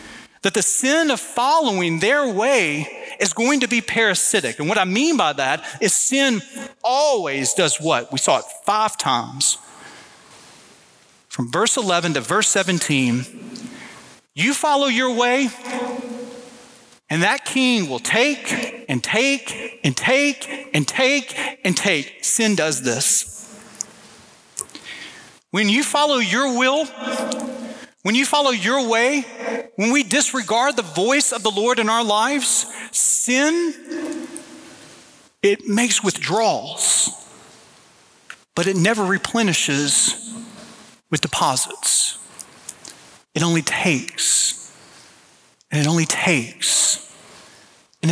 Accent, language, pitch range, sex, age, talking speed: American, English, 190-265 Hz, male, 40-59, 115 wpm